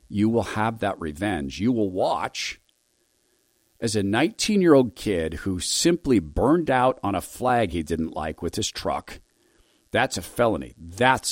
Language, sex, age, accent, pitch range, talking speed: English, male, 50-69, American, 75-110 Hz, 155 wpm